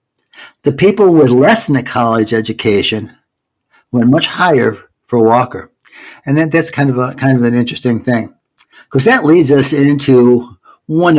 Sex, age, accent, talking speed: male, 60-79, American, 160 wpm